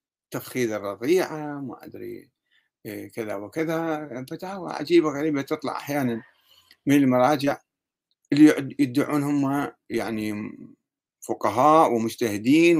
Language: Arabic